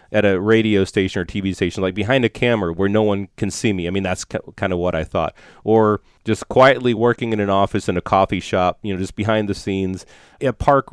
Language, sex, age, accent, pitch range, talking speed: English, male, 30-49, American, 95-115 Hz, 240 wpm